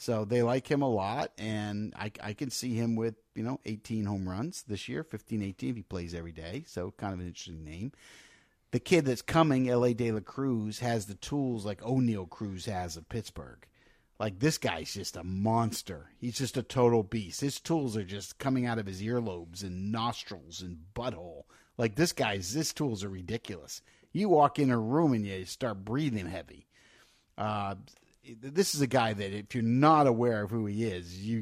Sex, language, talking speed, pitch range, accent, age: male, English, 200 wpm, 100-130 Hz, American, 50-69